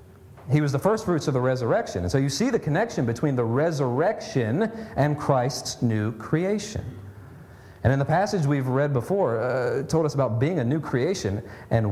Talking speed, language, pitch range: 185 wpm, English, 105-140 Hz